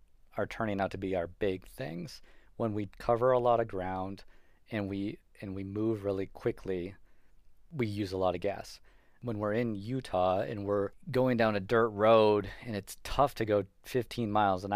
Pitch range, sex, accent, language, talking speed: 100-115 Hz, male, American, English, 190 wpm